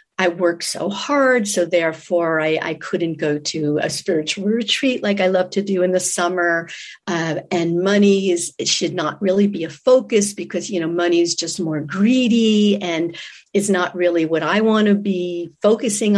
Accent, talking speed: American, 190 wpm